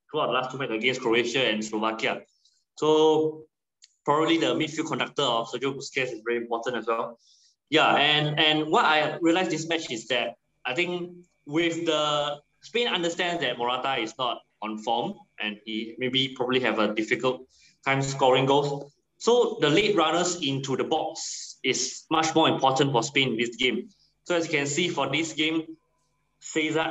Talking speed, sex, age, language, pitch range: 175 wpm, male, 20-39, English, 130-160 Hz